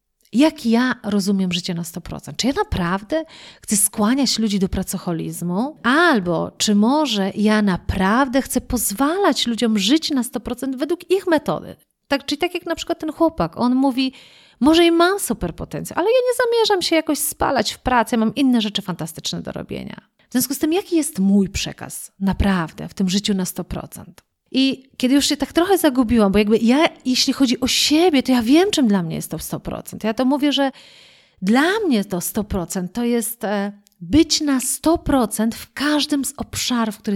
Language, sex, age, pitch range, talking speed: Polish, female, 30-49, 200-280 Hz, 180 wpm